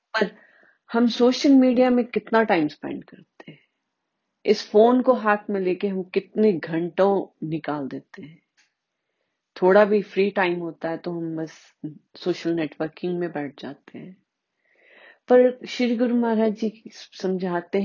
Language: Hindi